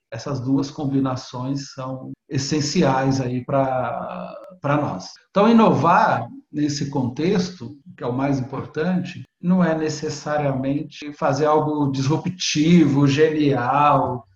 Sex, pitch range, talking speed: male, 140-175 Hz, 95 wpm